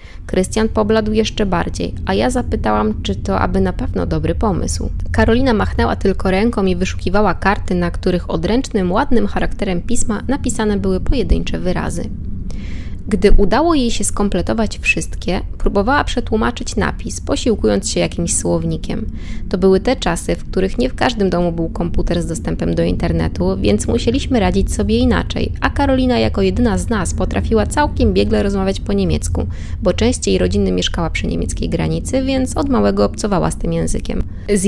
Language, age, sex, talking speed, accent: Polish, 20-39, female, 160 wpm, native